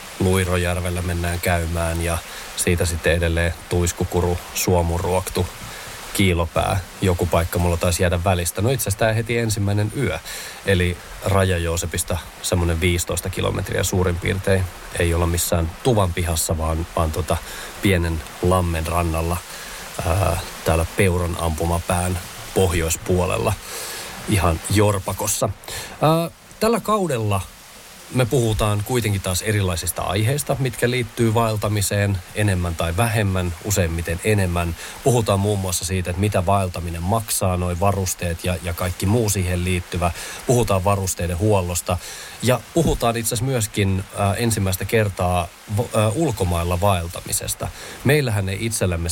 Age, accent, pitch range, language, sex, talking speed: 30-49, native, 90-105 Hz, Finnish, male, 120 wpm